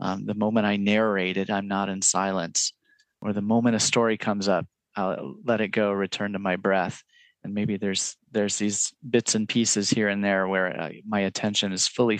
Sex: male